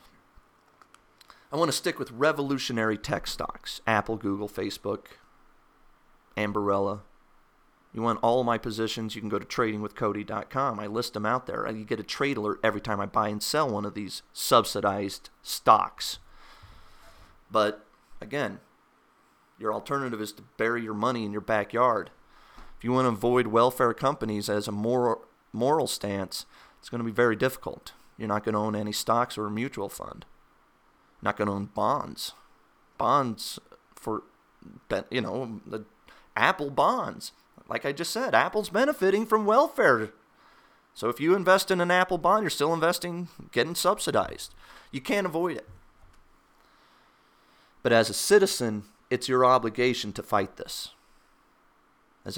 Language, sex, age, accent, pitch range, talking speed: English, male, 30-49, American, 105-150 Hz, 150 wpm